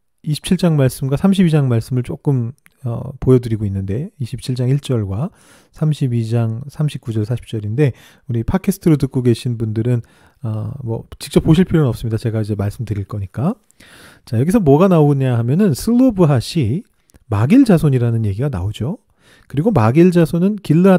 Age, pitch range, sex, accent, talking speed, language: 40-59, 125-185 Hz, male, Korean, 120 wpm, English